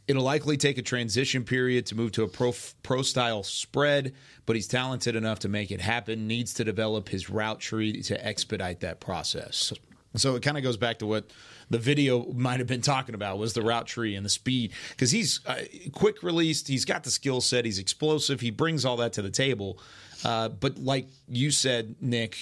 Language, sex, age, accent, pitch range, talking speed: English, male, 30-49, American, 105-130 Hz, 205 wpm